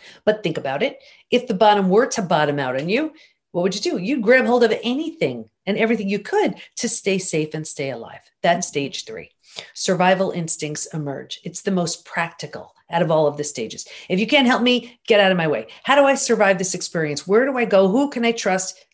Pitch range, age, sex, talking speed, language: 175-240 Hz, 40-59, female, 230 wpm, English